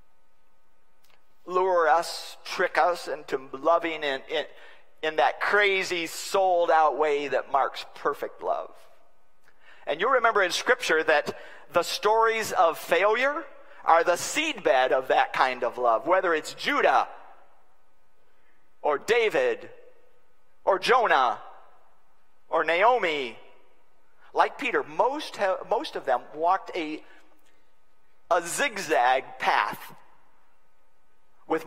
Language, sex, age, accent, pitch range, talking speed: English, male, 50-69, American, 155-220 Hz, 110 wpm